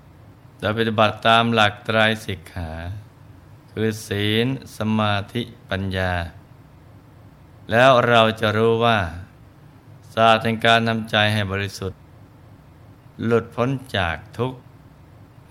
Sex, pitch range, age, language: male, 100-120 Hz, 20-39, Thai